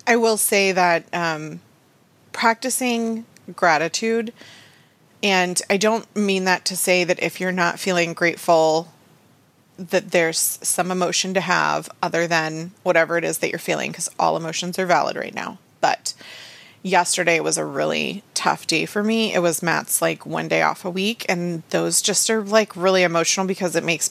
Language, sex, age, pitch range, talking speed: English, female, 30-49, 170-205 Hz, 170 wpm